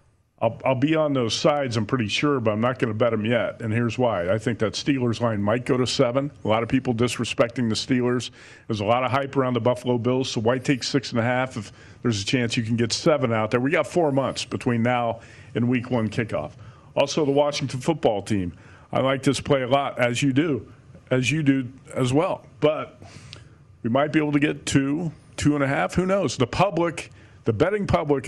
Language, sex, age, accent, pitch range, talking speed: English, male, 50-69, American, 115-140 Hz, 235 wpm